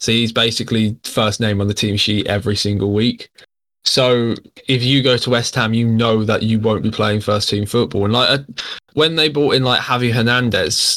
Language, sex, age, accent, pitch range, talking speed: English, male, 10-29, British, 110-125 Hz, 215 wpm